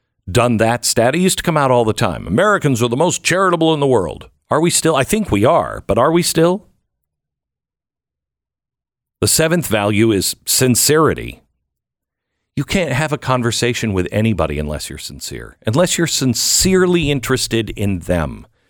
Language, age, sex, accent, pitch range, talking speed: English, 50-69, male, American, 105-165 Hz, 165 wpm